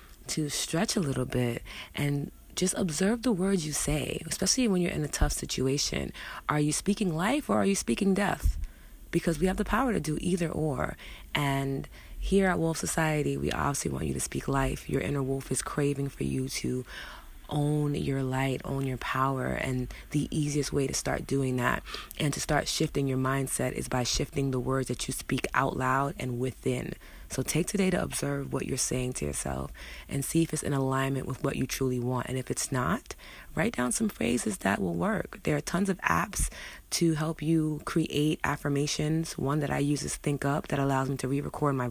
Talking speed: 205 wpm